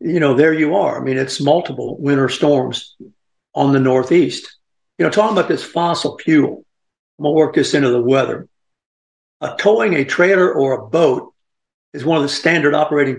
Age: 60-79